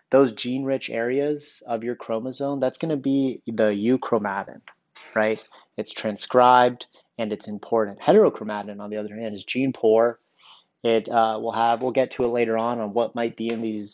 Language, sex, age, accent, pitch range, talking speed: English, male, 30-49, American, 110-125 Hz, 175 wpm